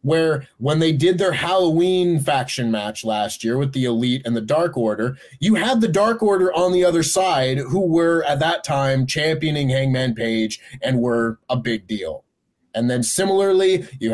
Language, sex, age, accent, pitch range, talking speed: English, male, 30-49, American, 130-185 Hz, 185 wpm